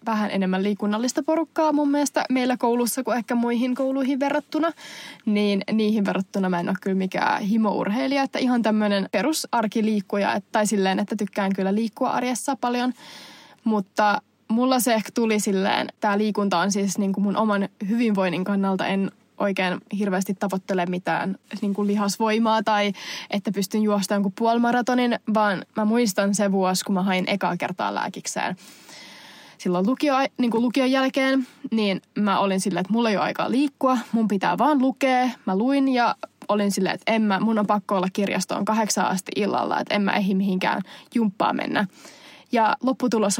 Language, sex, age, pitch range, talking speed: Finnish, female, 20-39, 200-250 Hz, 165 wpm